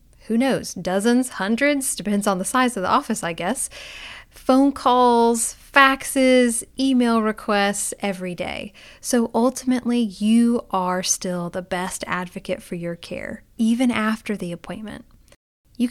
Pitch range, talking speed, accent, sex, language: 185-245 Hz, 135 wpm, American, female, English